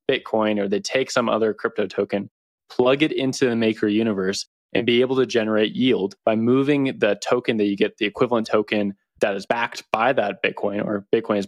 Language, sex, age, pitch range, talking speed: English, male, 20-39, 105-125 Hz, 205 wpm